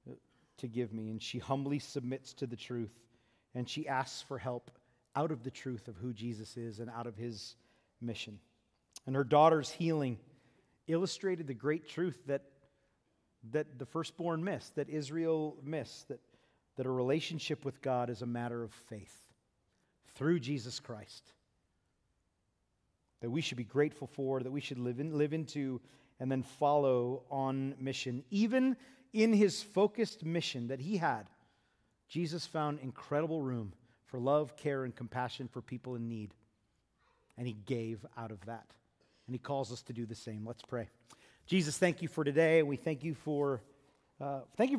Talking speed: 165 wpm